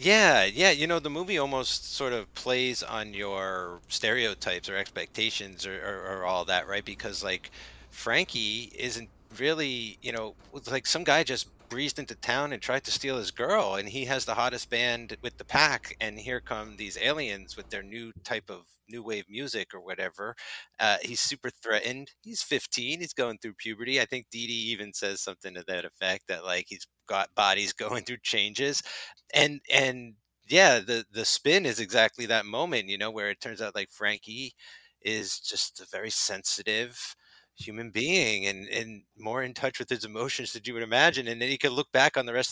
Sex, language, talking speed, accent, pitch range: male, English, 200 wpm, American, 105-130 Hz